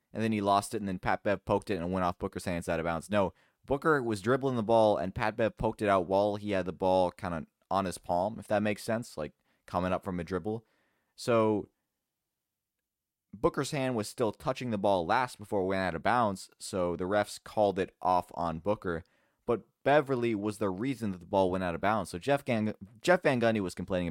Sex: male